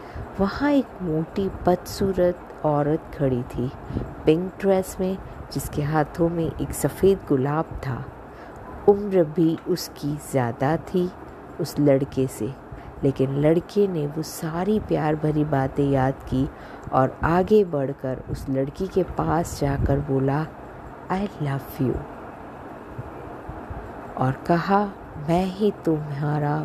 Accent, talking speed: Indian, 115 wpm